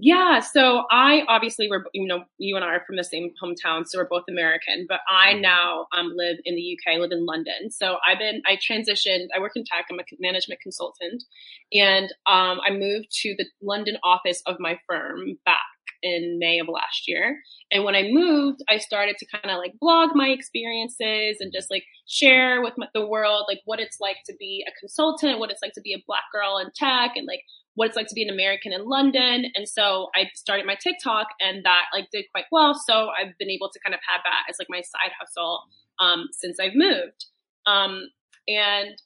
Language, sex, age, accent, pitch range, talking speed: English, female, 20-39, American, 180-240 Hz, 215 wpm